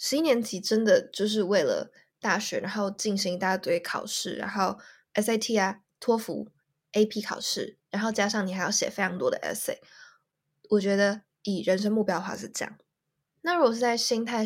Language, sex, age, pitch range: Chinese, female, 10-29, 190-240 Hz